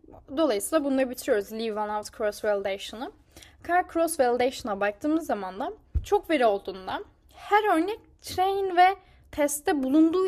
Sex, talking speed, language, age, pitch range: female, 135 wpm, Turkish, 10-29, 230-345 Hz